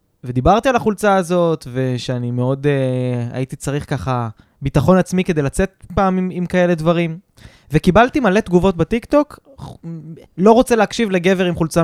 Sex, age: male, 20-39